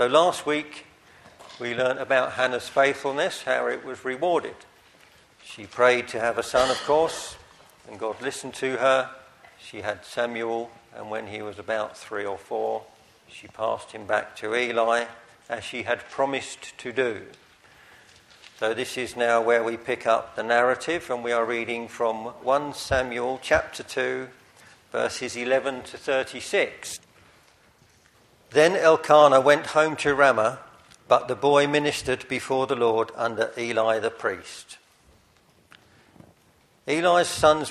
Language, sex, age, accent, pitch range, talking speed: English, male, 50-69, British, 120-145 Hz, 145 wpm